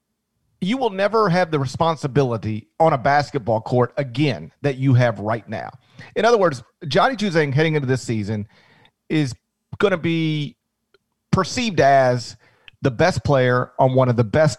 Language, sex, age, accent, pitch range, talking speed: English, male, 40-59, American, 120-155 Hz, 160 wpm